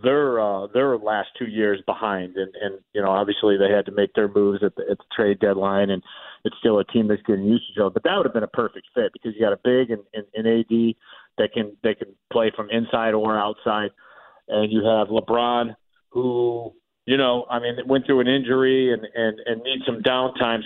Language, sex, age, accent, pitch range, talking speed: English, male, 40-59, American, 105-120 Hz, 225 wpm